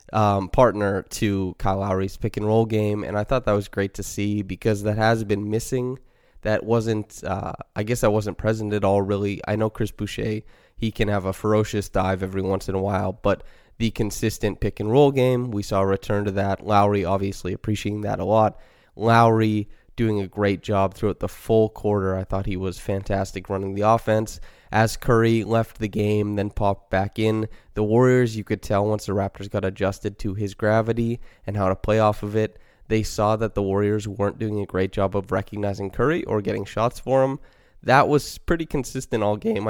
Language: English